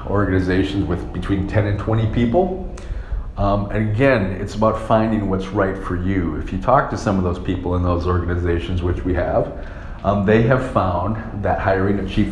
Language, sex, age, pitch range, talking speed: English, male, 40-59, 90-105 Hz, 190 wpm